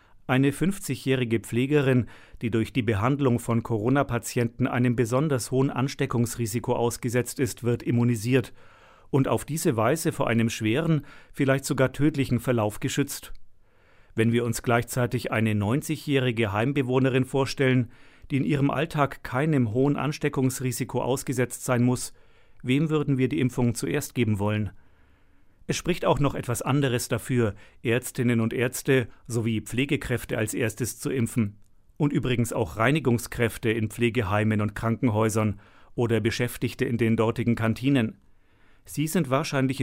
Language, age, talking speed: German, 40-59, 135 wpm